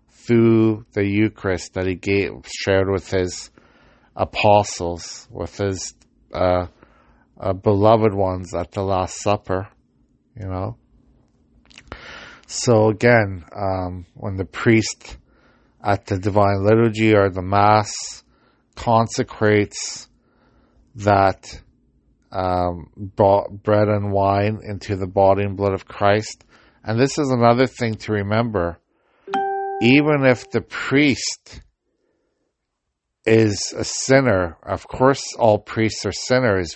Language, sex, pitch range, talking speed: English, male, 100-120 Hz, 110 wpm